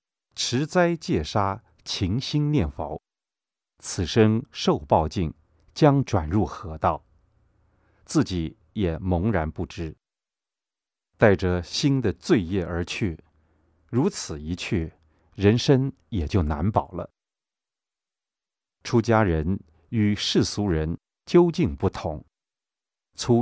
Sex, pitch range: male, 80-115 Hz